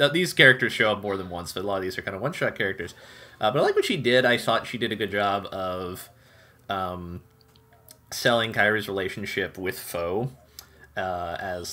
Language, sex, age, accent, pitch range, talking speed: English, male, 20-39, American, 95-125 Hz, 205 wpm